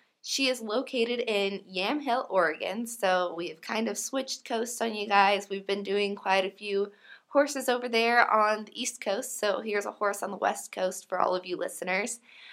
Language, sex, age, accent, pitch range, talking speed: English, female, 20-39, American, 185-235 Hz, 195 wpm